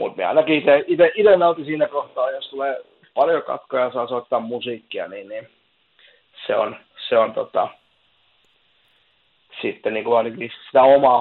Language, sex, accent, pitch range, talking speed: Finnish, male, native, 125-155 Hz, 140 wpm